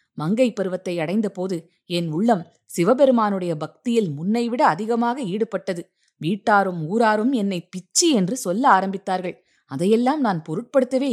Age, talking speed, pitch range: 20-39, 115 wpm, 180-235 Hz